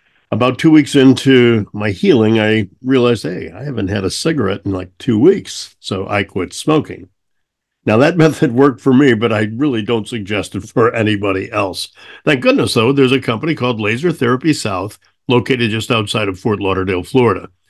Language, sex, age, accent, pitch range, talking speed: English, male, 60-79, American, 105-130 Hz, 185 wpm